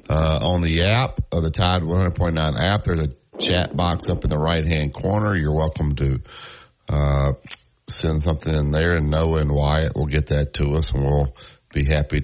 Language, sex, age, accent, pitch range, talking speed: English, male, 50-69, American, 75-100 Hz, 190 wpm